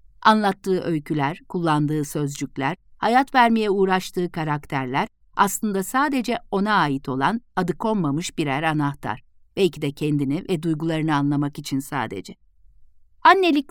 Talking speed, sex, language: 115 wpm, female, Turkish